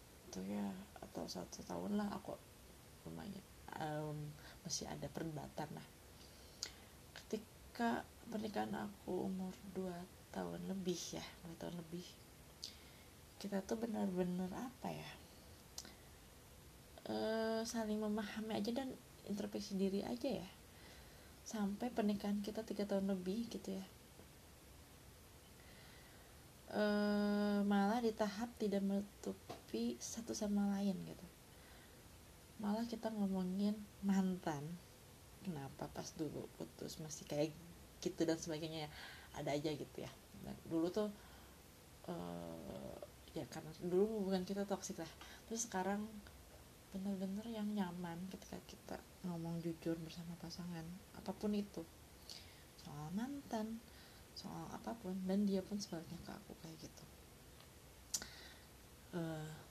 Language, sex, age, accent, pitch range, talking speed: Indonesian, female, 20-39, native, 150-205 Hz, 110 wpm